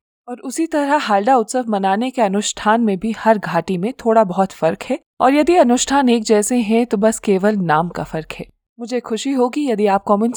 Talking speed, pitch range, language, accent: 210 wpm, 185-240 Hz, Hindi, native